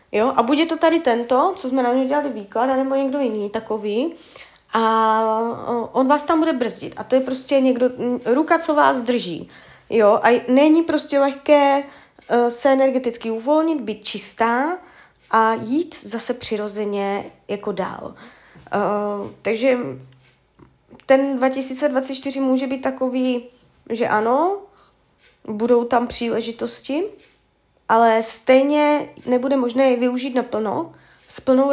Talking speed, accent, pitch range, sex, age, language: 130 wpm, native, 225-275 Hz, female, 20-39, Czech